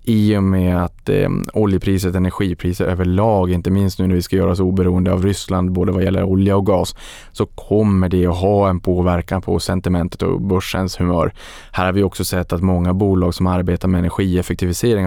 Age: 20-39